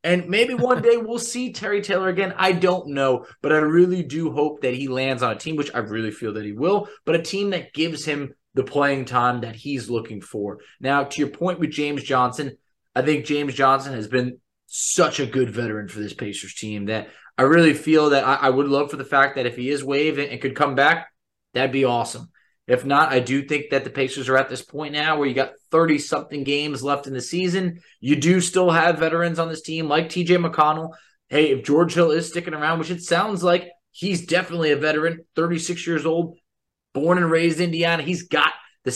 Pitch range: 135-175 Hz